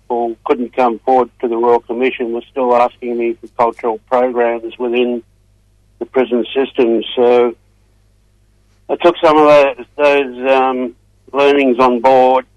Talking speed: 140 wpm